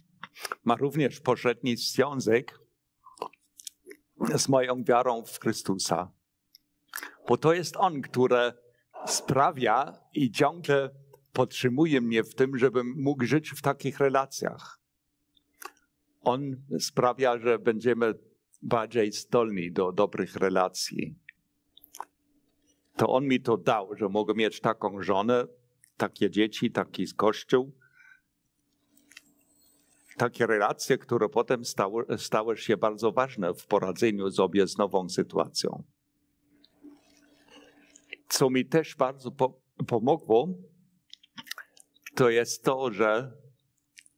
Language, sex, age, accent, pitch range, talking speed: Polish, male, 50-69, native, 110-140 Hz, 100 wpm